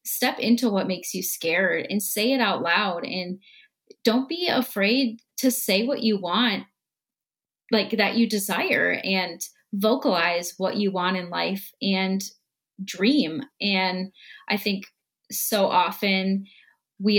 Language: English